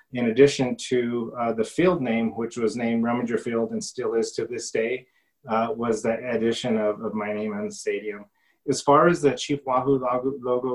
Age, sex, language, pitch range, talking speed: 30-49, male, English, 115-130 Hz, 200 wpm